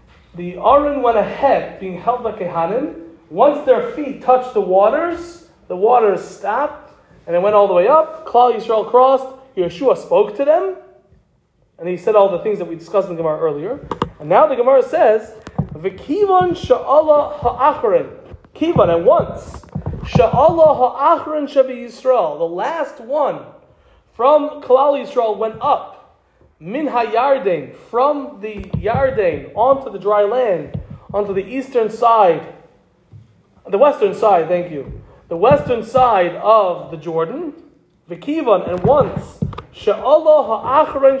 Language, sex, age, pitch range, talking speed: English, male, 30-49, 205-290 Hz, 140 wpm